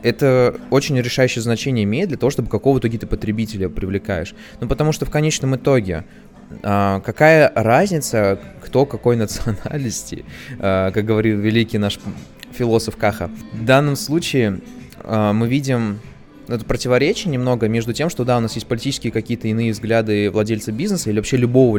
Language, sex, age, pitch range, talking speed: Russian, male, 20-39, 105-135 Hz, 150 wpm